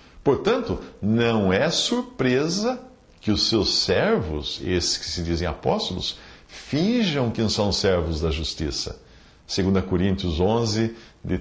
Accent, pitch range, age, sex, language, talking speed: Brazilian, 90-115 Hz, 60-79, male, English, 125 wpm